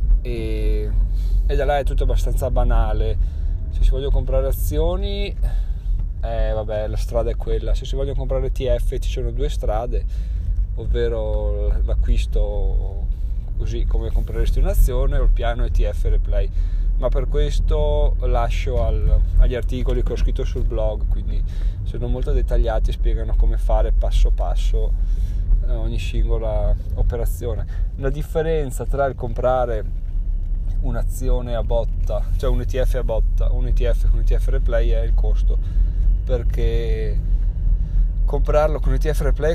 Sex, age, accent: male, 20-39, native